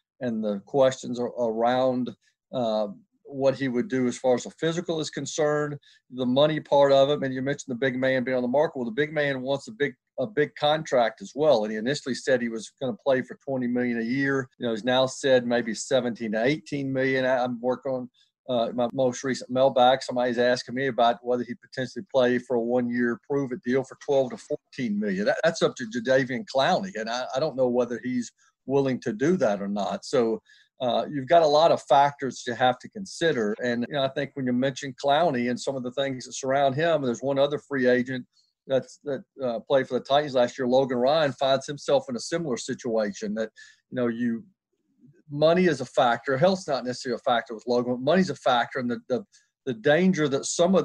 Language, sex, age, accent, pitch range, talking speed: English, male, 50-69, American, 125-145 Hz, 230 wpm